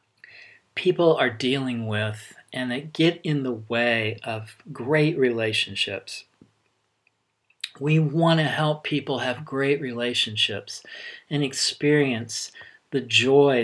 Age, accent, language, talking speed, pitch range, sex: 40-59, American, English, 110 wpm, 115-140 Hz, male